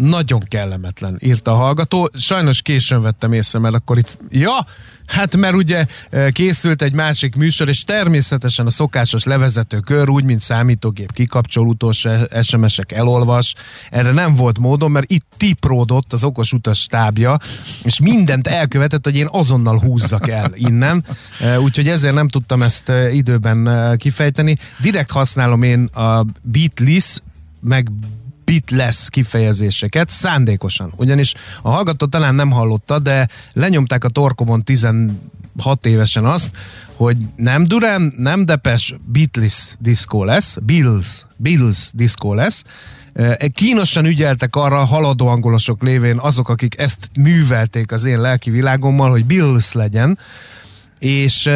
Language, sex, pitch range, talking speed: Hungarian, male, 115-145 Hz, 130 wpm